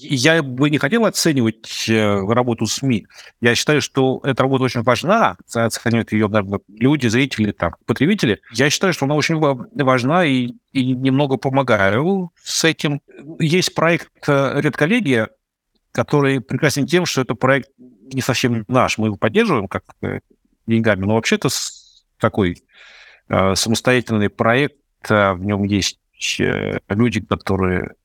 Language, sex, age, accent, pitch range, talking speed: Russian, male, 50-69, native, 110-140 Hz, 130 wpm